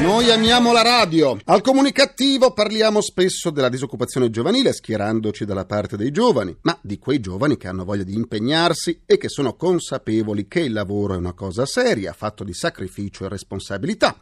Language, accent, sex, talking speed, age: Italian, native, male, 175 wpm, 40-59